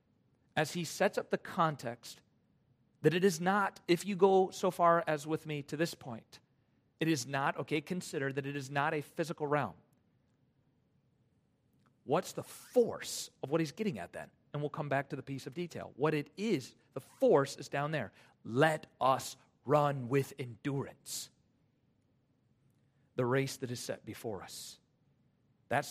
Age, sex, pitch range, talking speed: 40-59, male, 125-155 Hz, 165 wpm